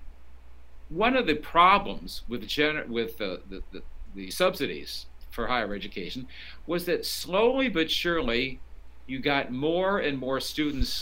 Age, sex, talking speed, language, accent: 50-69, male, 135 wpm, English, American